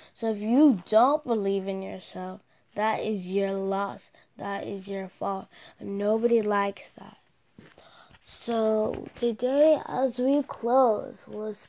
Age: 20-39